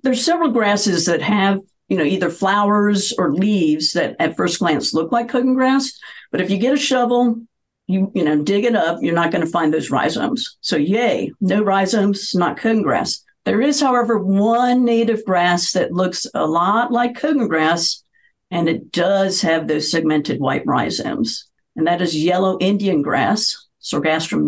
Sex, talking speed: female, 180 wpm